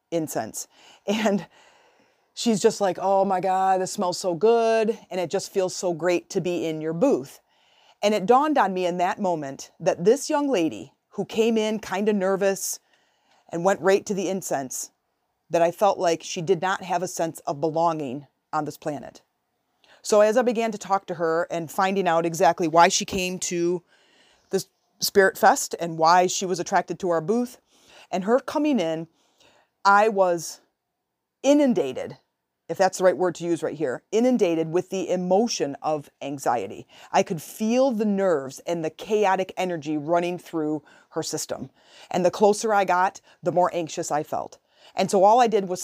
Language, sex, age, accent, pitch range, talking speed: English, female, 30-49, American, 170-210 Hz, 185 wpm